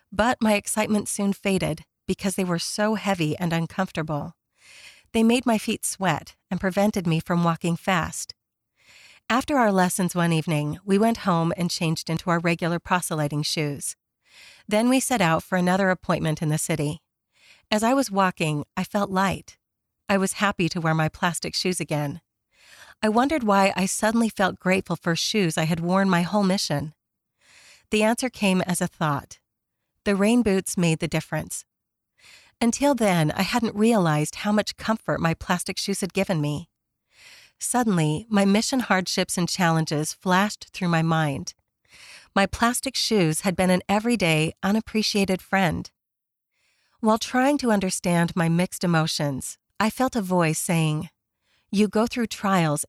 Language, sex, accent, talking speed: English, female, American, 160 wpm